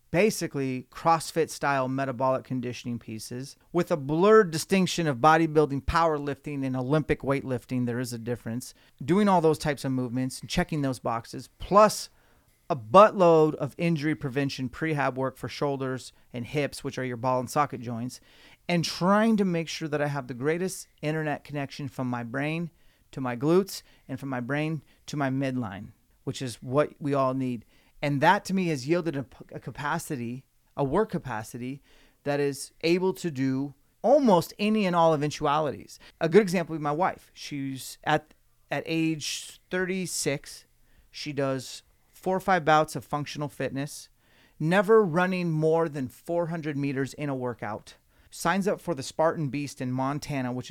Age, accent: 30-49, American